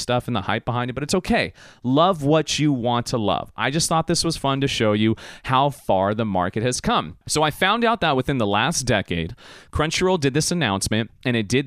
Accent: American